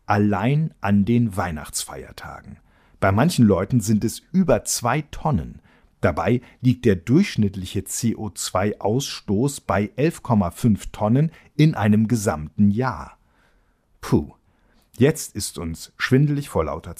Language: German